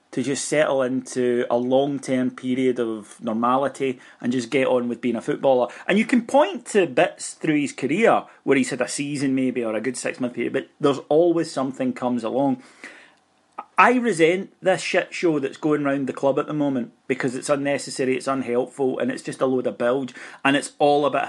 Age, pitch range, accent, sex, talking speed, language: 30-49, 120-145 Hz, British, male, 205 wpm, English